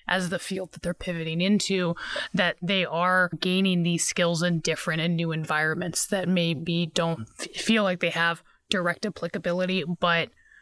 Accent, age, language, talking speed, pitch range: American, 20-39, English, 160 wpm, 165-190 Hz